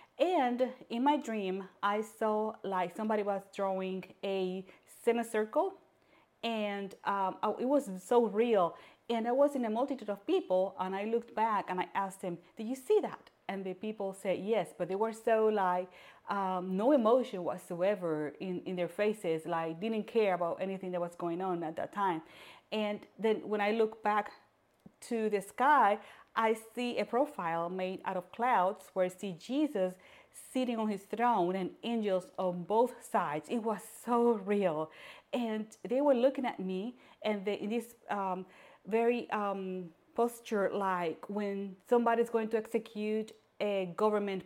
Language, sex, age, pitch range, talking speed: English, female, 30-49, 185-225 Hz, 165 wpm